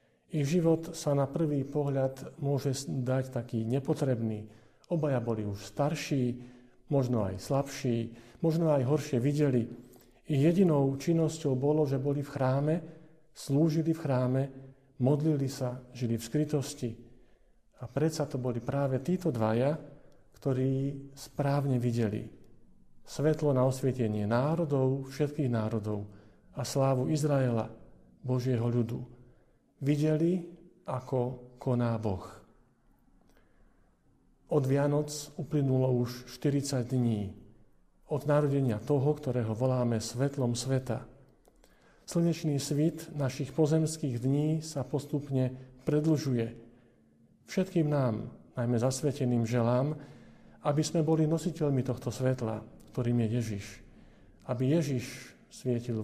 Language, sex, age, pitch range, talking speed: Slovak, male, 50-69, 120-150 Hz, 105 wpm